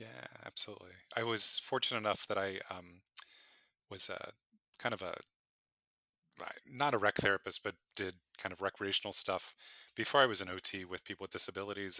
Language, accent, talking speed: English, American, 165 wpm